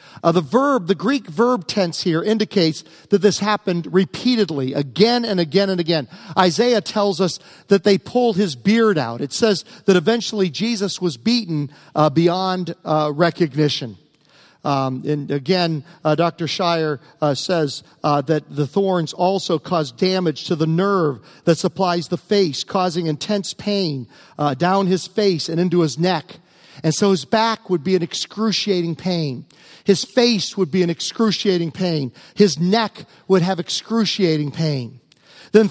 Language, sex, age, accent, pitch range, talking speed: English, male, 50-69, American, 160-210 Hz, 160 wpm